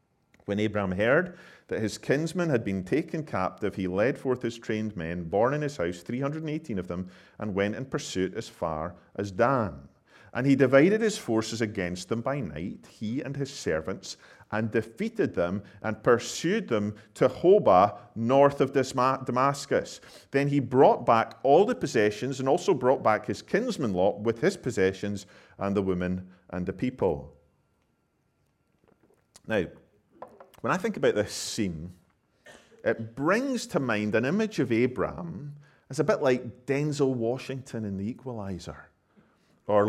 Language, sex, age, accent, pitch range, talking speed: English, male, 40-59, British, 95-135 Hz, 155 wpm